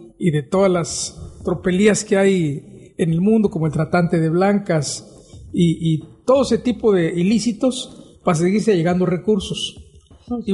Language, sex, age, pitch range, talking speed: Spanish, male, 50-69, 170-225 Hz, 155 wpm